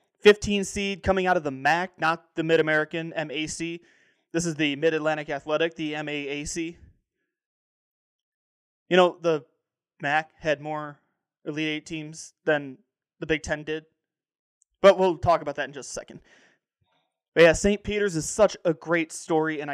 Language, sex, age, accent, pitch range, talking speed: English, male, 20-39, American, 155-180 Hz, 155 wpm